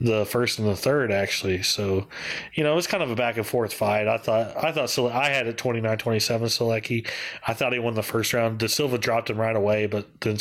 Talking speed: 240 wpm